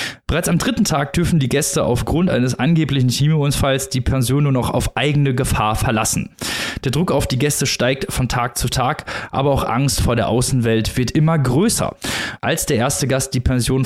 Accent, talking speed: German, 190 wpm